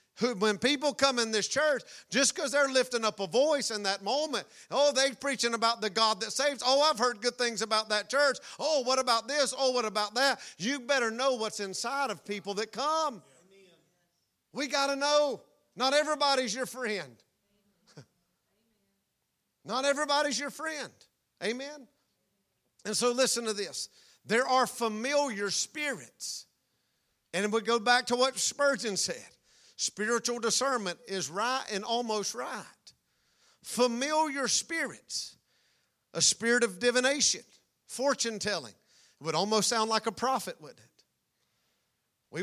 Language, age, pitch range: English, 50-69, 200-260 Hz